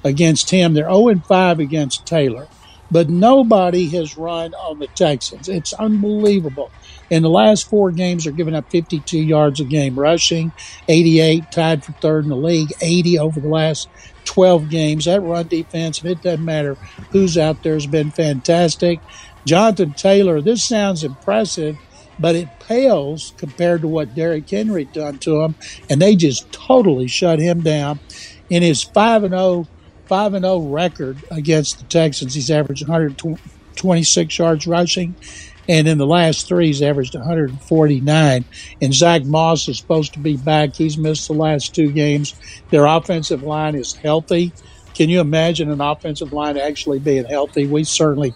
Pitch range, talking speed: 150-175 Hz, 160 wpm